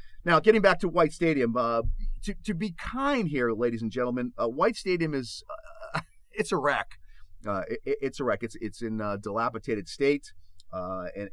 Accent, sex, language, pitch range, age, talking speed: American, male, English, 105-155 Hz, 40-59, 190 wpm